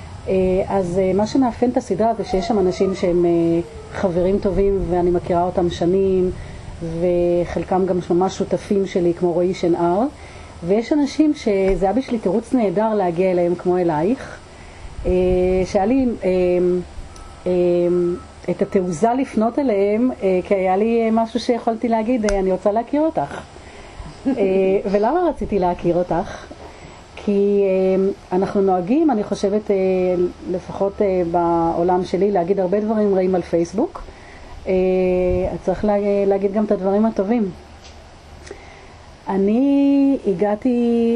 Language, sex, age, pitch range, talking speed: Hebrew, female, 40-59, 175-210 Hz, 115 wpm